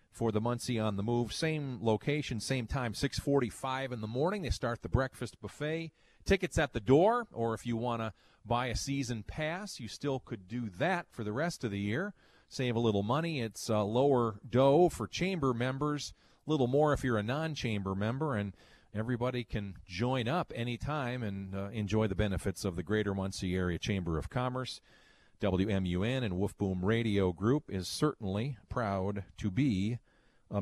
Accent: American